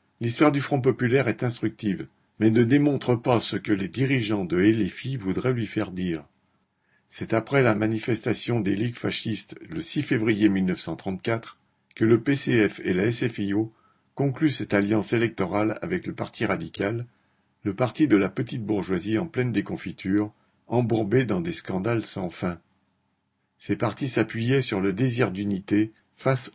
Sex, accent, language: male, French, French